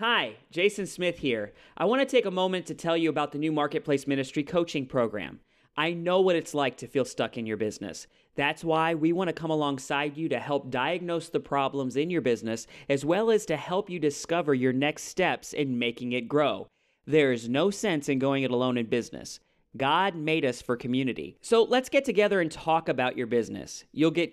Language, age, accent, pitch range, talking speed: English, 40-59, American, 125-160 Hz, 215 wpm